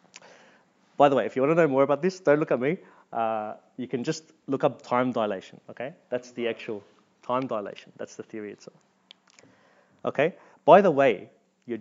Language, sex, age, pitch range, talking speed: English, male, 30-49, 110-145 Hz, 195 wpm